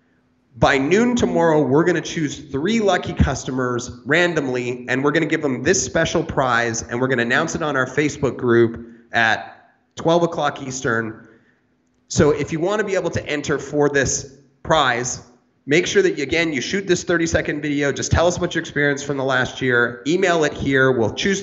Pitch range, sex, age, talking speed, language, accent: 130-170 Hz, male, 30-49, 200 wpm, English, American